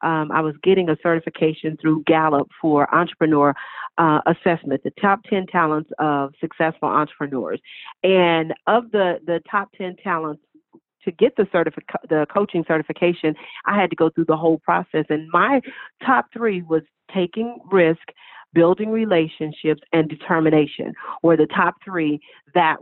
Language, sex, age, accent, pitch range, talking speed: English, female, 40-59, American, 160-210 Hz, 150 wpm